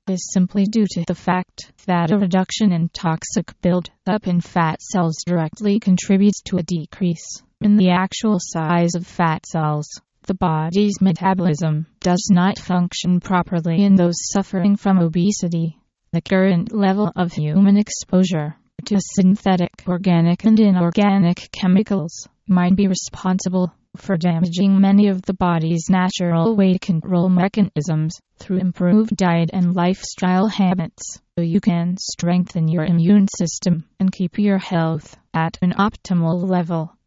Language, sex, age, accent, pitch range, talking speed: English, female, 20-39, American, 170-195 Hz, 140 wpm